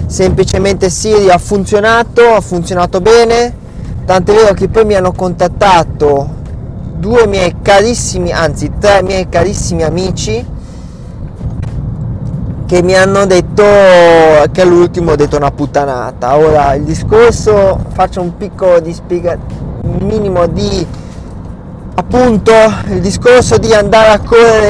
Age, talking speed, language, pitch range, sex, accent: 20-39, 120 wpm, Italian, 150-185 Hz, male, native